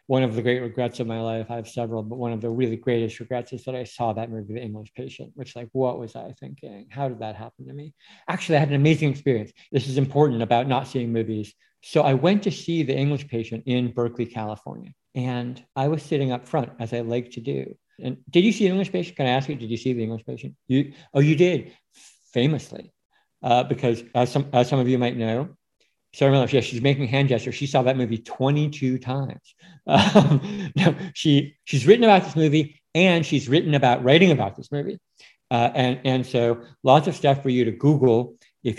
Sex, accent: male, American